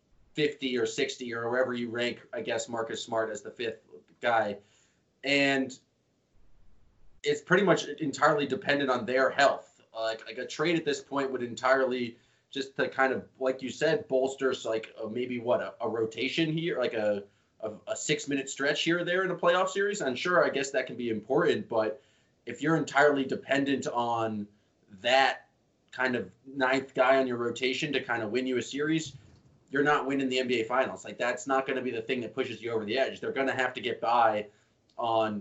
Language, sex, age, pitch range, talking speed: English, male, 20-39, 115-135 Hz, 205 wpm